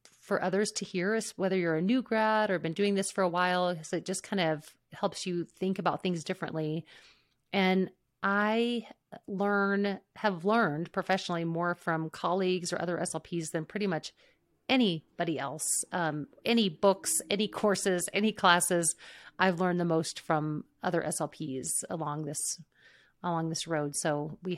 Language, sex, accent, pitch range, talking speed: English, female, American, 165-205 Hz, 160 wpm